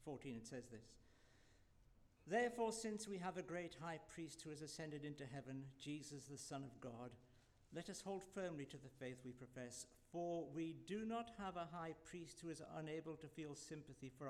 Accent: British